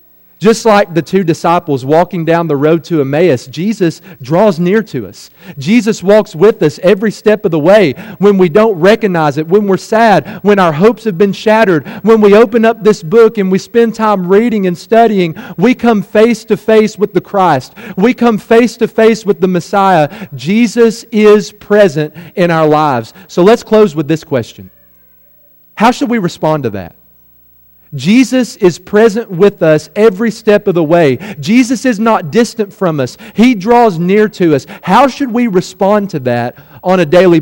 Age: 40-59